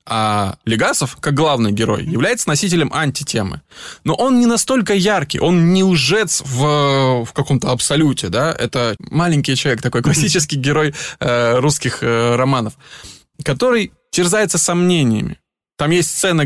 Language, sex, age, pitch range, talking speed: Russian, male, 20-39, 115-160 Hz, 135 wpm